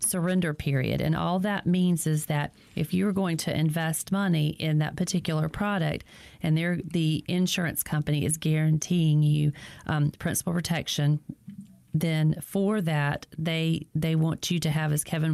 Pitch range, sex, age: 150-170 Hz, female, 40-59